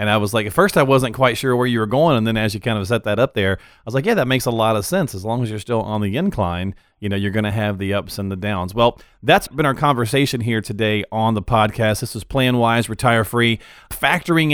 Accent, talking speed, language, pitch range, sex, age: American, 290 wpm, English, 105-130 Hz, male, 40-59